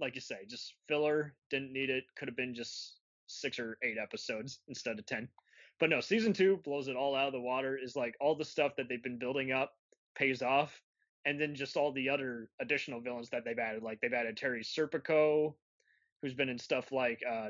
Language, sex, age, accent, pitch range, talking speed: English, male, 20-39, American, 120-140 Hz, 220 wpm